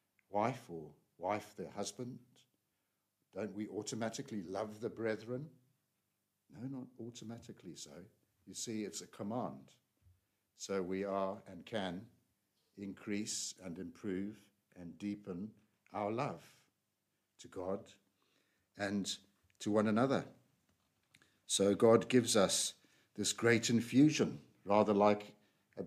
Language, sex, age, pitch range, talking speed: English, male, 60-79, 100-125 Hz, 110 wpm